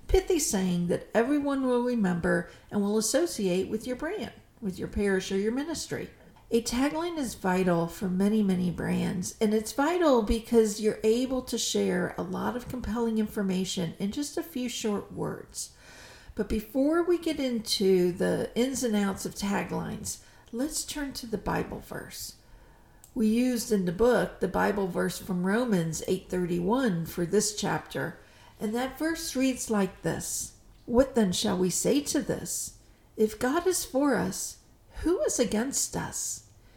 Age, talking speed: 50-69, 165 wpm